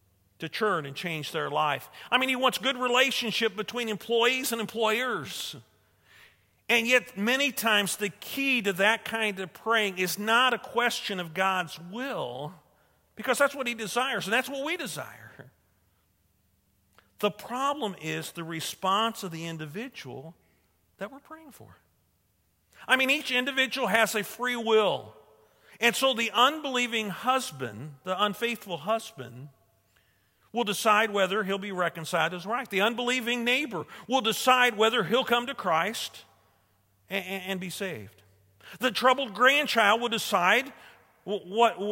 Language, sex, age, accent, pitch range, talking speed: English, male, 50-69, American, 180-245 Hz, 145 wpm